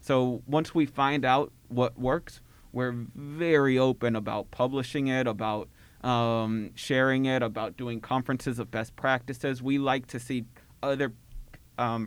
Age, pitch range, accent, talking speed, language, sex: 30-49, 115-130 Hz, American, 145 wpm, English, male